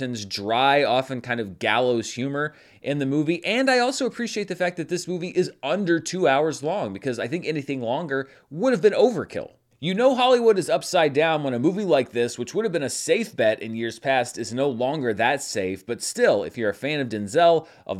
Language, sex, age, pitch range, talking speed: English, male, 30-49, 120-175 Hz, 225 wpm